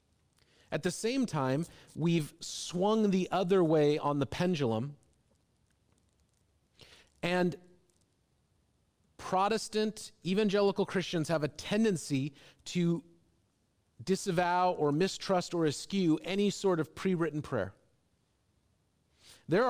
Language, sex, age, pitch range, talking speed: English, male, 40-59, 130-175 Hz, 95 wpm